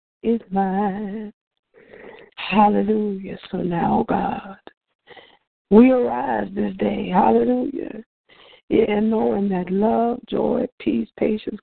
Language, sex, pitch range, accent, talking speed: English, female, 200-255 Hz, American, 105 wpm